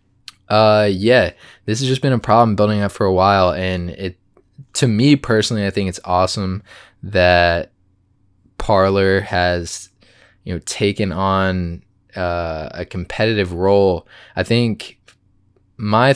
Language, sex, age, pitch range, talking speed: English, male, 20-39, 95-105 Hz, 135 wpm